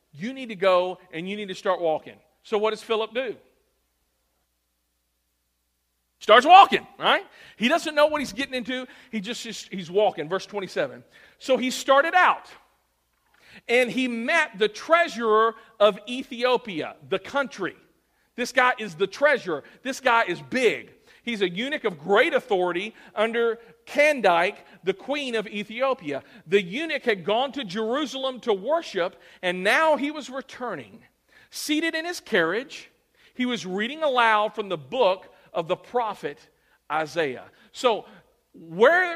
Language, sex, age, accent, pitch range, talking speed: English, male, 40-59, American, 185-265 Hz, 145 wpm